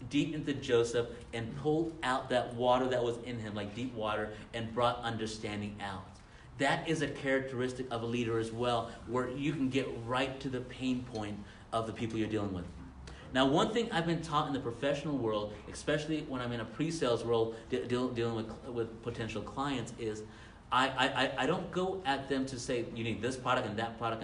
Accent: American